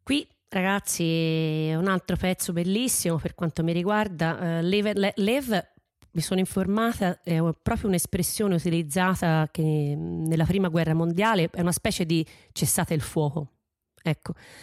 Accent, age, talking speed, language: native, 30-49, 135 wpm, Italian